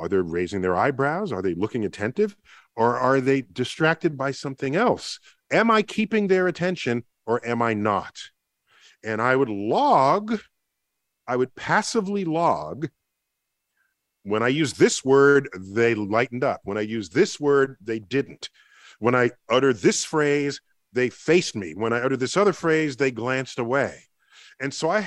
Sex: male